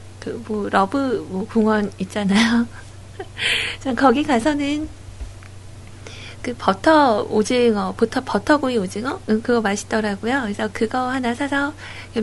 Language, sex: Korean, female